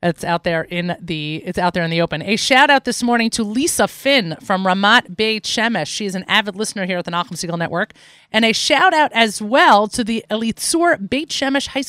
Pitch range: 180-235 Hz